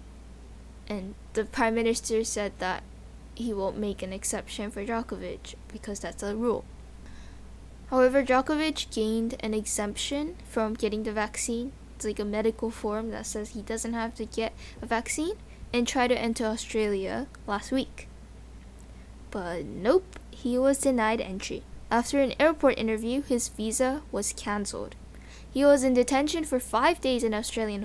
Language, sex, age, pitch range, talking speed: English, female, 10-29, 215-265 Hz, 155 wpm